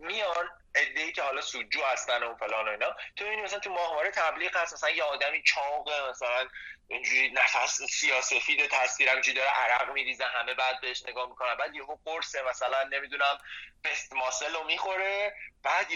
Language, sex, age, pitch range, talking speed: Persian, male, 30-49, 135-175 Hz, 170 wpm